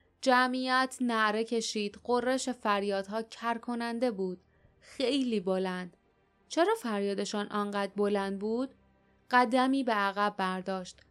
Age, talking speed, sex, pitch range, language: 20-39, 105 wpm, female, 200-235 Hz, Persian